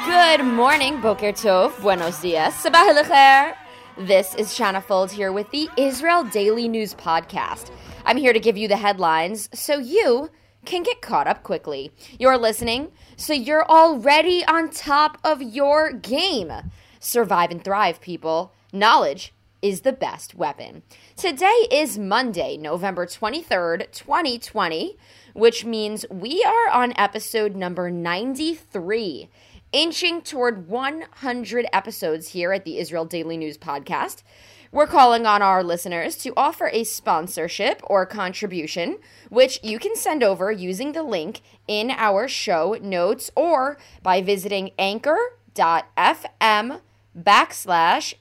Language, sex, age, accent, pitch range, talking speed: English, female, 20-39, American, 190-295 Hz, 130 wpm